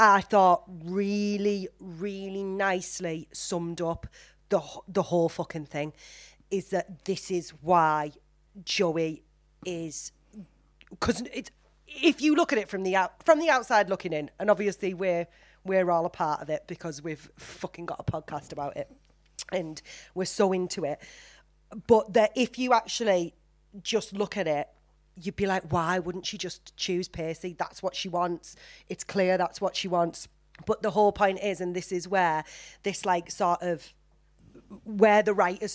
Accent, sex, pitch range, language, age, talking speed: British, female, 160-195 Hz, English, 30-49, 170 wpm